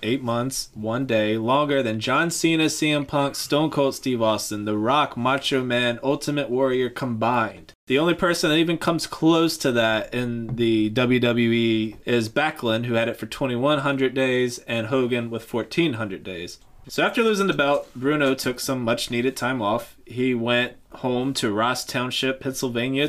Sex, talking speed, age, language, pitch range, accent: male, 165 wpm, 20-39, English, 115-145 Hz, American